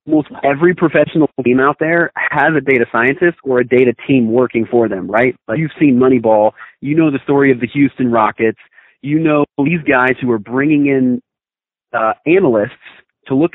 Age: 30-49